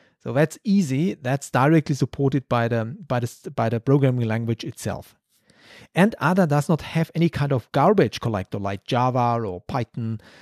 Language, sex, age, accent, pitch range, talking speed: English, male, 40-59, German, 130-160 Hz, 165 wpm